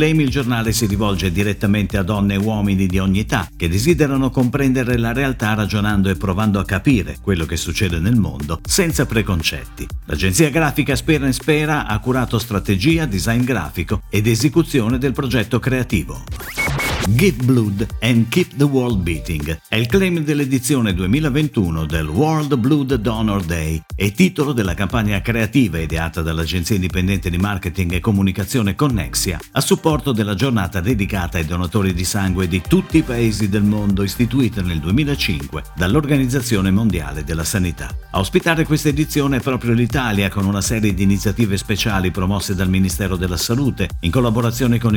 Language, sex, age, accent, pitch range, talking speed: Italian, male, 50-69, native, 95-135 Hz, 155 wpm